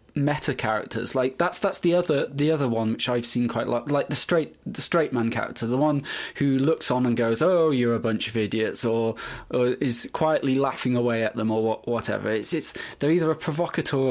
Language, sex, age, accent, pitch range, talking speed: English, male, 20-39, British, 115-135 Hz, 220 wpm